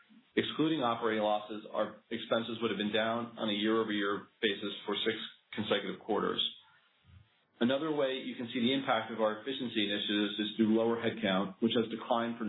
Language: English